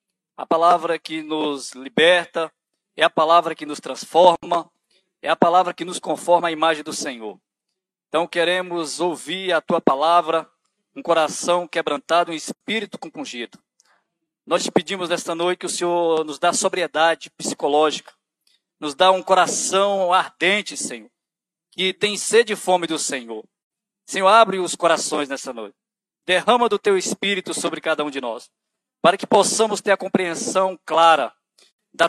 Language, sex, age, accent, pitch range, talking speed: Portuguese, male, 20-39, Brazilian, 165-205 Hz, 150 wpm